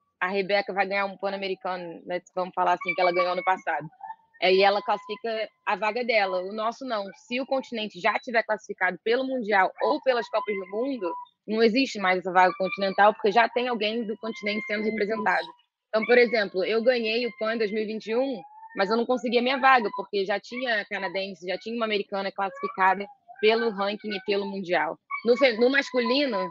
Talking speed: 190 wpm